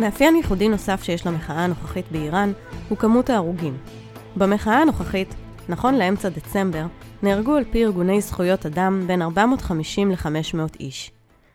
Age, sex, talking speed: 20-39, female, 130 wpm